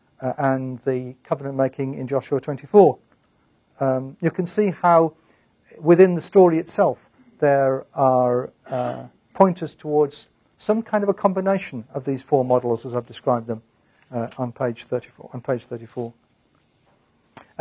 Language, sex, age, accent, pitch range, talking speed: English, male, 50-69, British, 145-205 Hz, 135 wpm